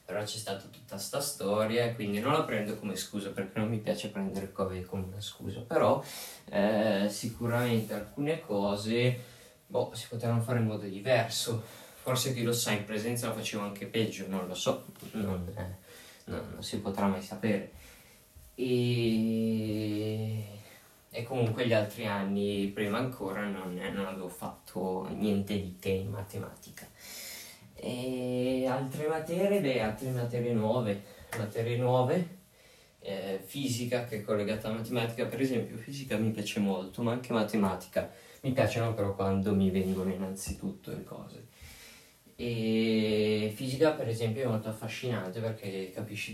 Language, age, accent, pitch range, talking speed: Italian, 20-39, native, 100-120 Hz, 150 wpm